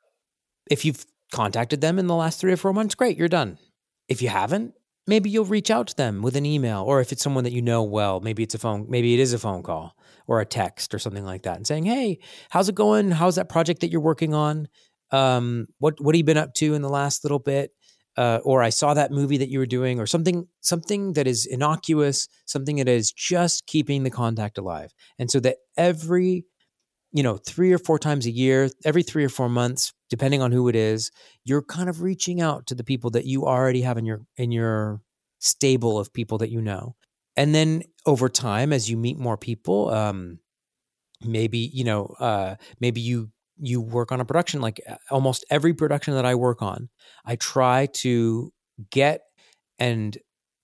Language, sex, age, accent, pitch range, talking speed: English, male, 30-49, American, 115-155 Hz, 210 wpm